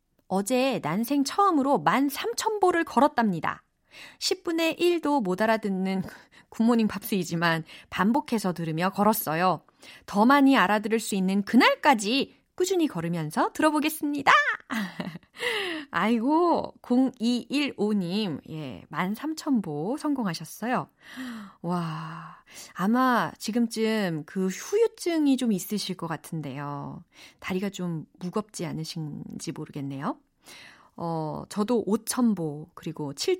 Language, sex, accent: Korean, female, native